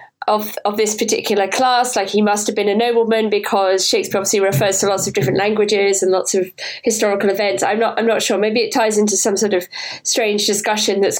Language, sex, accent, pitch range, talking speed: English, female, British, 200-245 Hz, 220 wpm